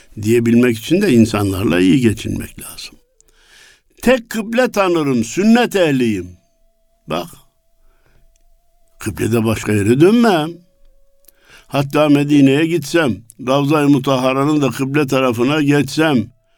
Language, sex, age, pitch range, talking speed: Turkish, male, 60-79, 115-175 Hz, 95 wpm